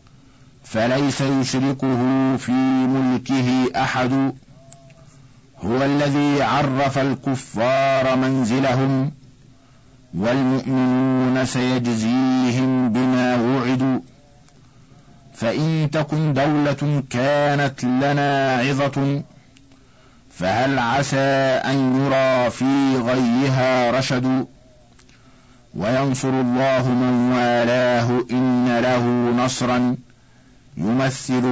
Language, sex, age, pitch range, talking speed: Arabic, male, 50-69, 130-140 Hz, 65 wpm